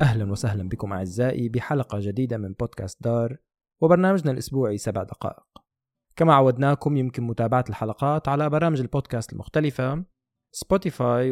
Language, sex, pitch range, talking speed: Arabic, male, 110-155 Hz, 120 wpm